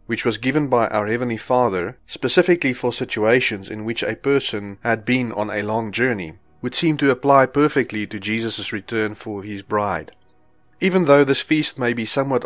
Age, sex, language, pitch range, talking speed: 30-49, male, English, 105-130 Hz, 185 wpm